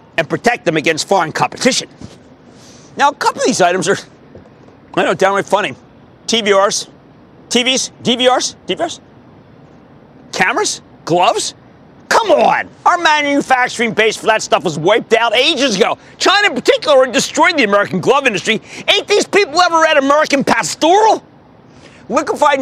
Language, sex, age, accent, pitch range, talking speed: English, male, 40-59, American, 185-285 Hz, 140 wpm